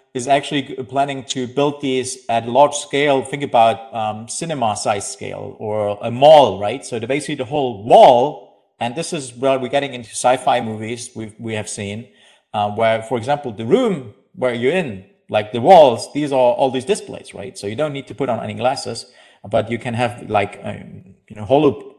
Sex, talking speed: male, 195 wpm